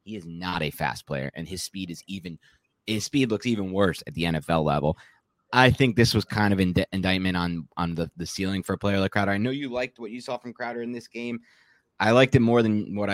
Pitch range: 80-110 Hz